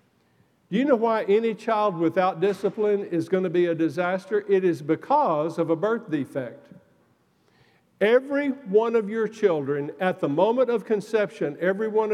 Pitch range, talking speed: 165-210 Hz, 165 wpm